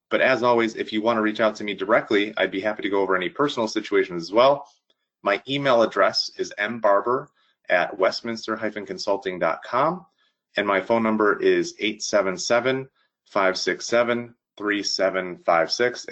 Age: 30-49